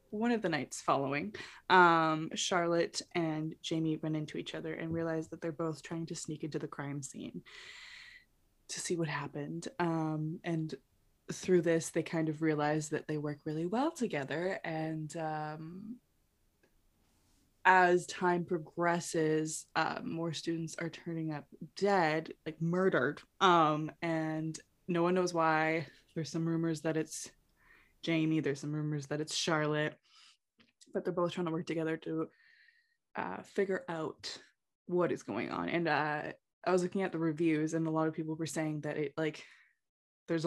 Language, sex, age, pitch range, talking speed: English, female, 20-39, 155-185 Hz, 160 wpm